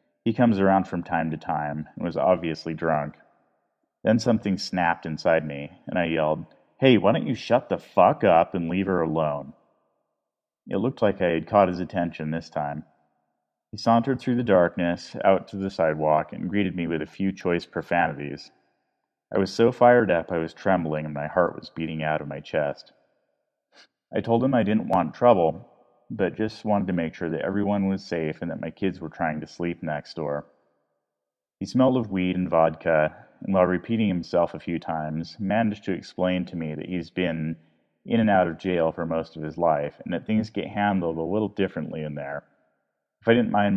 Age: 30-49